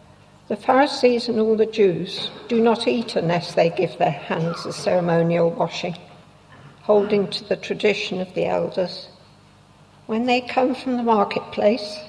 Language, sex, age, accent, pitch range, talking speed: English, female, 60-79, British, 175-225 Hz, 150 wpm